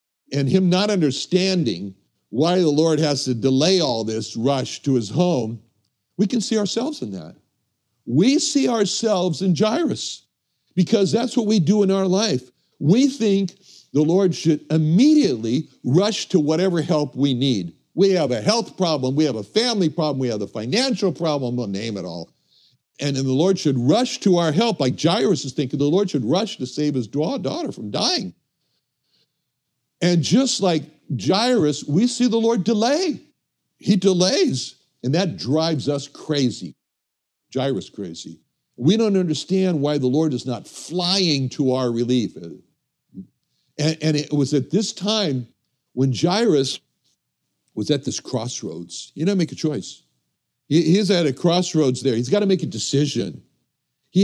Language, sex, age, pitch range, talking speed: English, male, 60-79, 130-190 Hz, 165 wpm